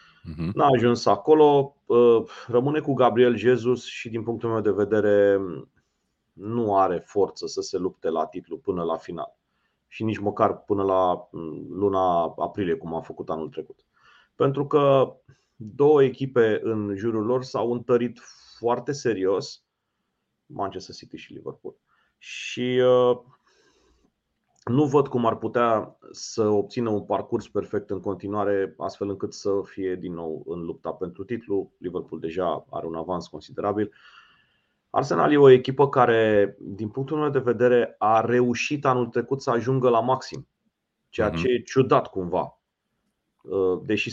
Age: 30-49